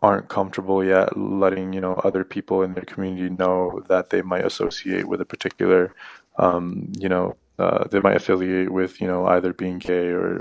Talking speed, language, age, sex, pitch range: 190 wpm, English, 20-39, male, 90-95 Hz